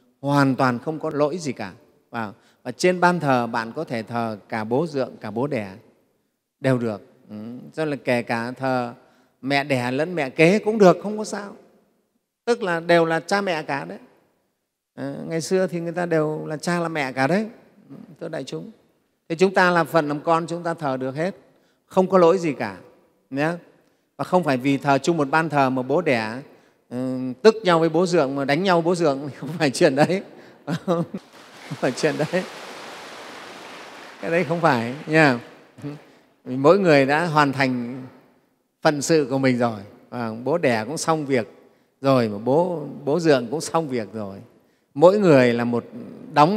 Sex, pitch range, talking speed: male, 130-170 Hz, 200 wpm